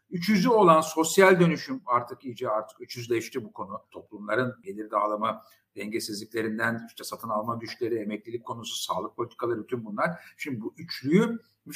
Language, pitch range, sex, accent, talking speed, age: Turkish, 115-190 Hz, male, native, 150 wpm, 50-69